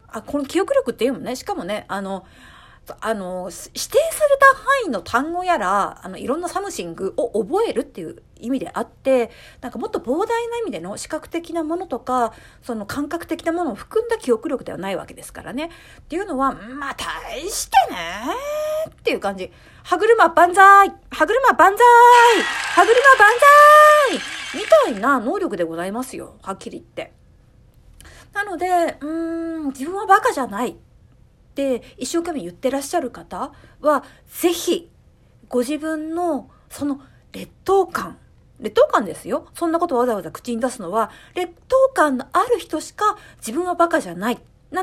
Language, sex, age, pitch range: Japanese, female, 40-59, 260-370 Hz